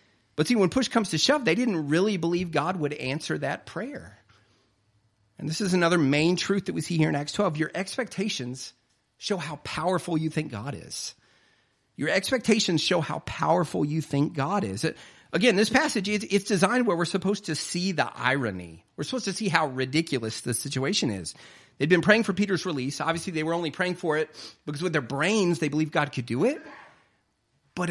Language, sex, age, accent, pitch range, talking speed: English, male, 40-59, American, 145-205 Hz, 200 wpm